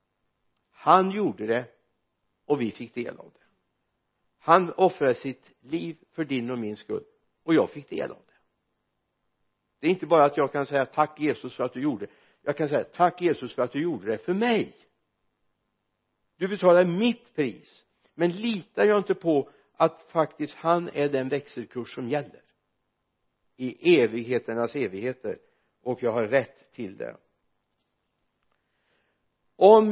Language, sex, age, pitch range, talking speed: Swedish, male, 60-79, 145-195 Hz, 155 wpm